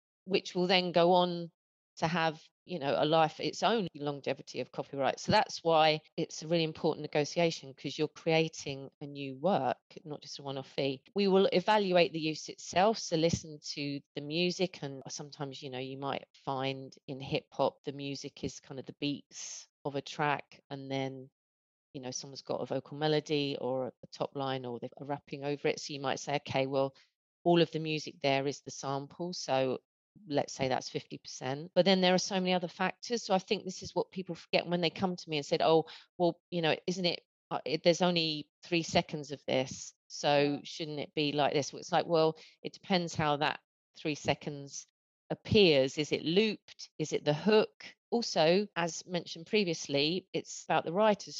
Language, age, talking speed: English, 30-49, 200 wpm